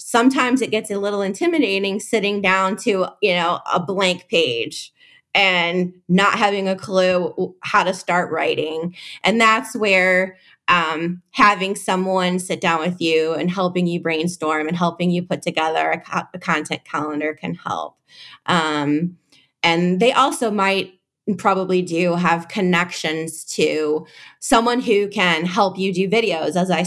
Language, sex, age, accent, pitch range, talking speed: English, female, 20-39, American, 170-205 Hz, 150 wpm